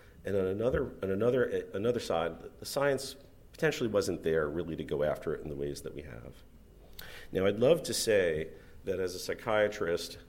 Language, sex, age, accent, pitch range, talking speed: English, male, 50-69, American, 85-130 Hz, 185 wpm